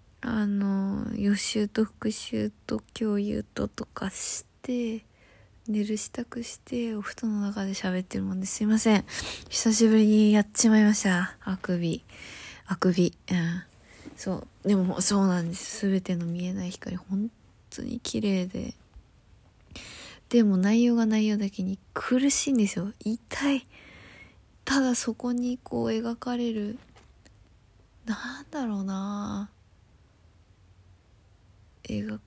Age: 20-39